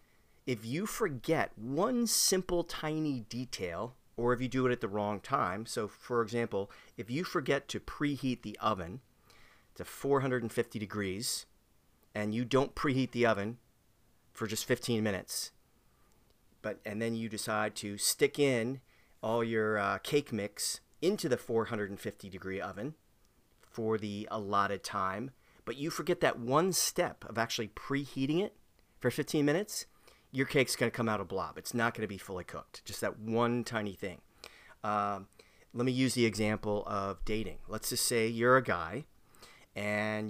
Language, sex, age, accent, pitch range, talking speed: English, male, 30-49, American, 105-125 Hz, 160 wpm